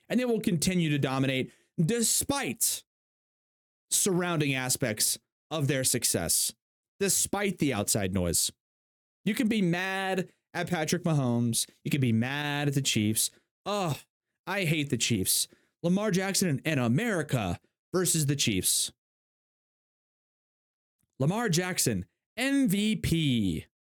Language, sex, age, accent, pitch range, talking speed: English, male, 30-49, American, 120-195 Hz, 115 wpm